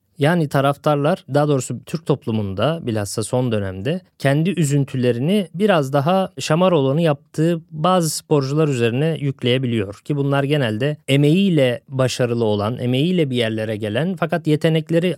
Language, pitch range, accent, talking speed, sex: Turkish, 125-170 Hz, native, 125 wpm, male